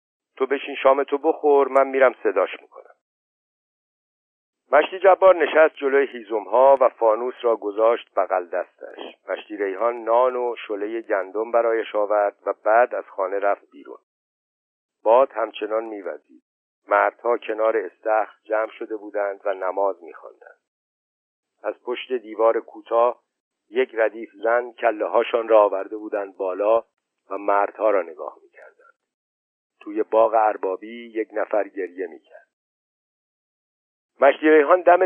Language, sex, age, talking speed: Persian, male, 50-69, 120 wpm